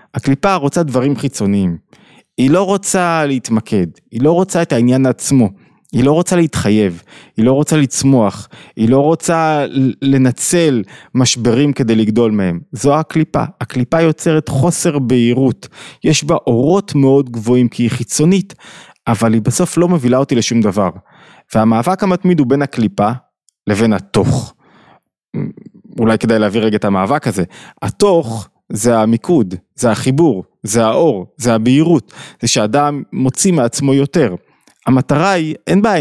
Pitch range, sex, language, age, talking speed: 110-150 Hz, male, Hebrew, 20-39, 140 wpm